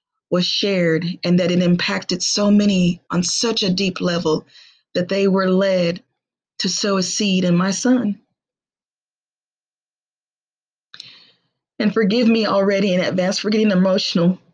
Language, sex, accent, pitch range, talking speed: English, female, American, 195-245 Hz, 135 wpm